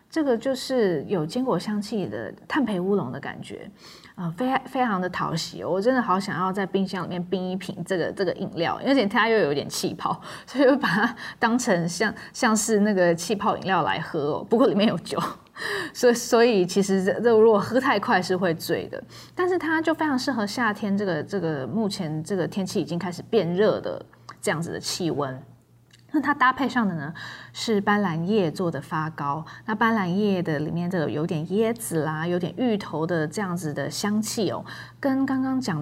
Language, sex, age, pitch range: Chinese, female, 20-39, 170-225 Hz